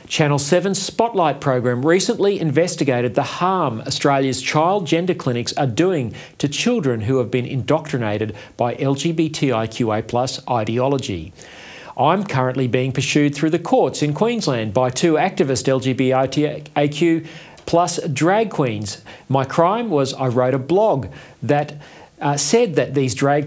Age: 40-59